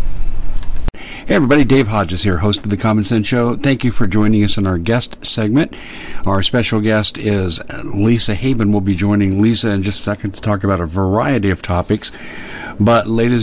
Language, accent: English, American